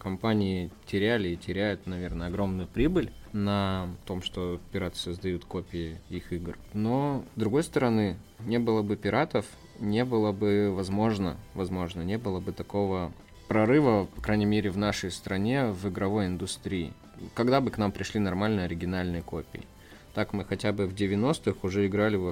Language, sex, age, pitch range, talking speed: Russian, male, 20-39, 85-105 Hz, 160 wpm